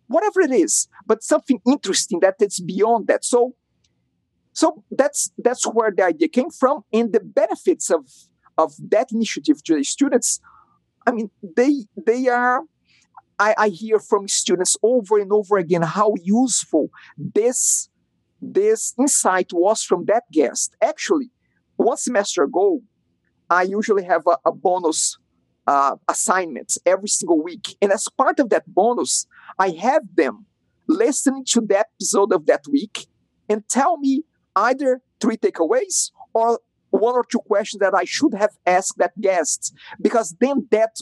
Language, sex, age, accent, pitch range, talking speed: English, male, 50-69, Brazilian, 205-290 Hz, 150 wpm